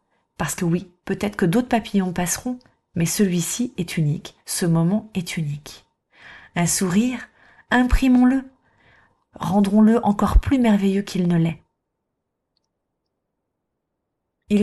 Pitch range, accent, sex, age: 170-210 Hz, French, female, 30-49